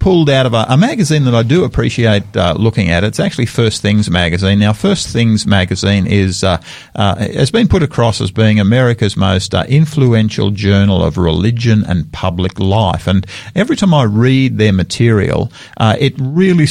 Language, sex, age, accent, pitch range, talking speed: English, male, 50-69, Australian, 100-140 Hz, 185 wpm